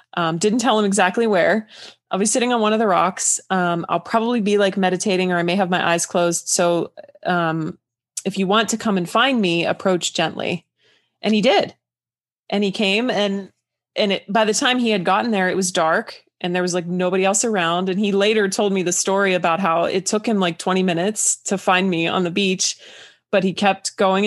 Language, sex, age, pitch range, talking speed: English, female, 20-39, 175-205 Hz, 220 wpm